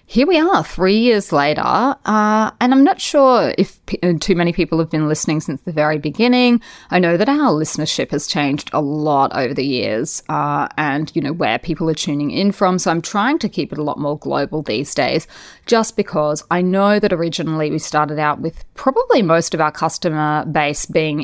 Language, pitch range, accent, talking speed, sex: English, 155-205 Hz, Australian, 210 wpm, female